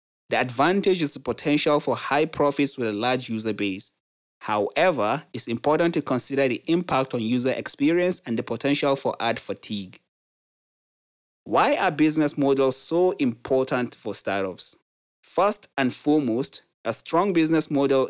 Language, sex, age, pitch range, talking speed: English, male, 30-49, 115-150 Hz, 145 wpm